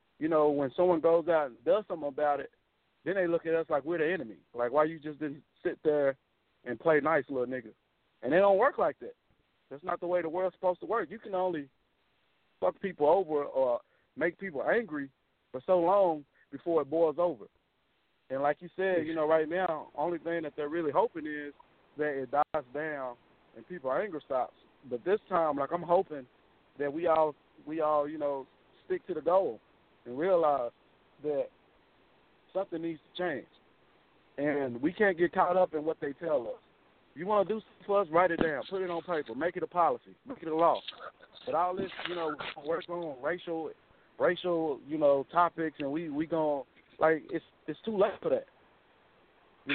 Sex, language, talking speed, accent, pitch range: male, English, 200 wpm, American, 150-185 Hz